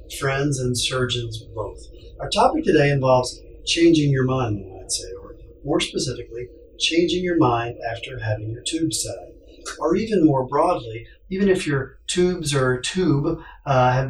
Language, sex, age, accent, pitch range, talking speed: English, male, 40-59, American, 115-155 Hz, 160 wpm